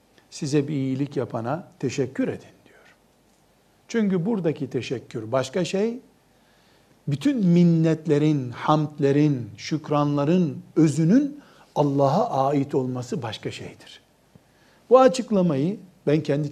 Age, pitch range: 60-79, 130-180 Hz